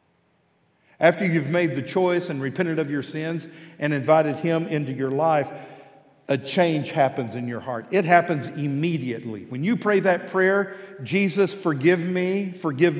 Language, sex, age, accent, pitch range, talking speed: English, male, 50-69, American, 145-185 Hz, 155 wpm